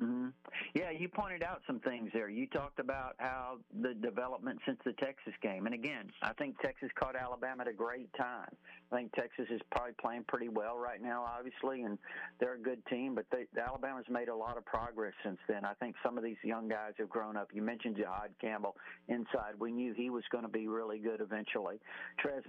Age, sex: 50-69, male